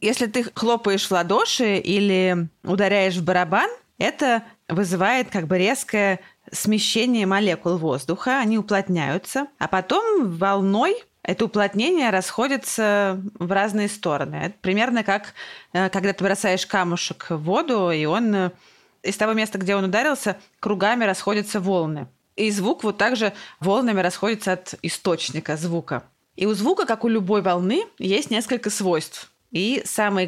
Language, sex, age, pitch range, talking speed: Russian, female, 20-39, 180-220 Hz, 135 wpm